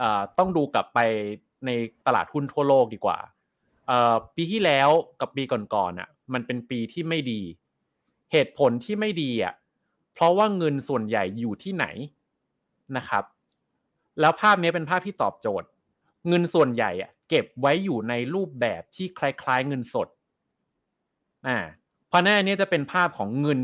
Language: Thai